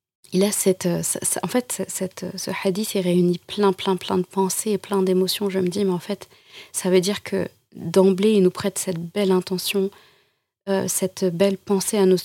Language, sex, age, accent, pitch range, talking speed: French, female, 30-49, French, 185-205 Hz, 200 wpm